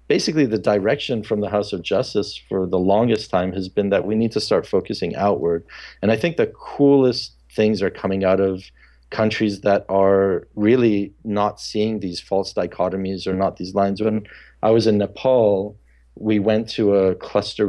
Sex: male